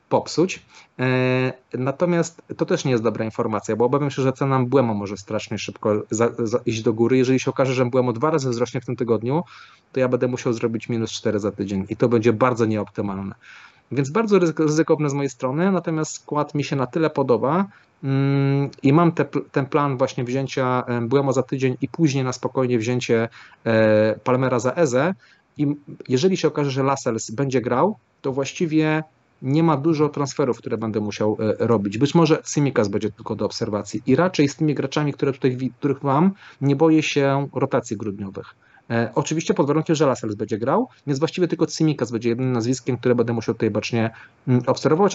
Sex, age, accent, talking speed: male, 30-49, native, 175 wpm